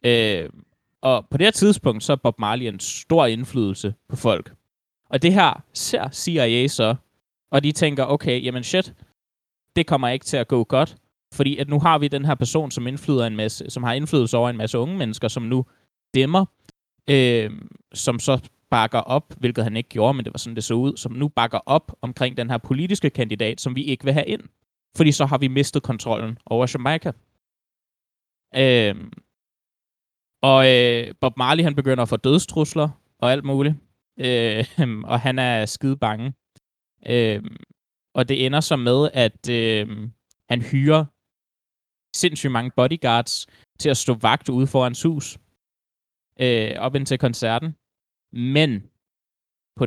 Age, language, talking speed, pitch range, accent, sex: 20-39, Danish, 165 wpm, 120-145 Hz, native, male